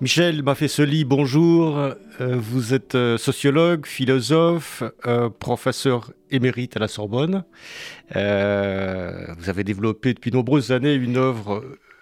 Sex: male